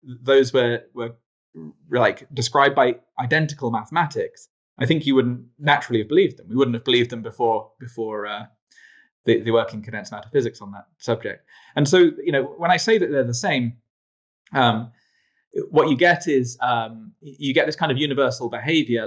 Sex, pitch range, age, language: male, 115-150 Hz, 20-39, English